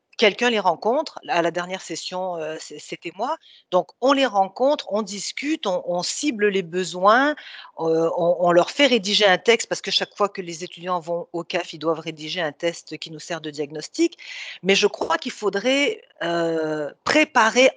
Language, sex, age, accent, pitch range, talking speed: French, female, 40-59, French, 180-250 Hz, 180 wpm